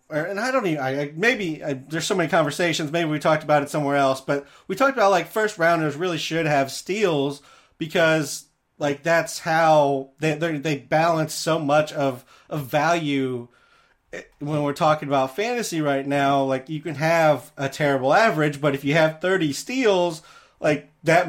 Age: 30-49